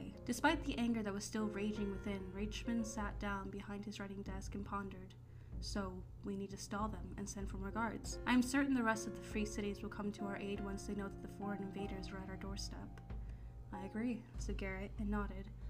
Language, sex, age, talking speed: English, female, 20-39, 225 wpm